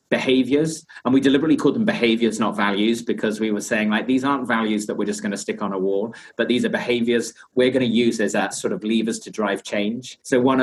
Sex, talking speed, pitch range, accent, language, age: male, 250 wpm, 105-125 Hz, British, English, 30-49